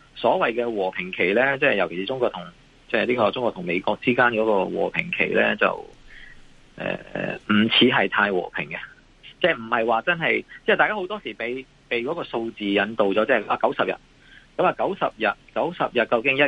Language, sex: Chinese, male